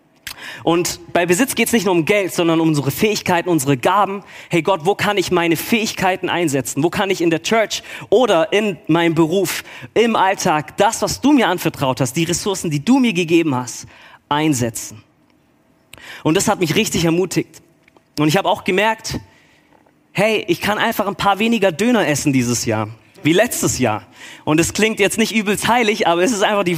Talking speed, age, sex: 195 wpm, 30-49, male